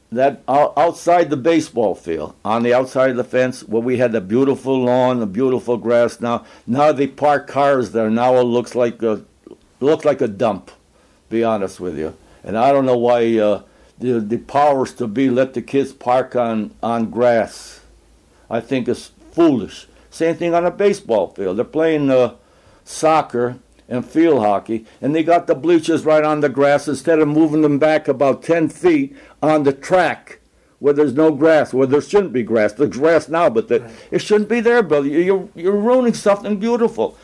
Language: English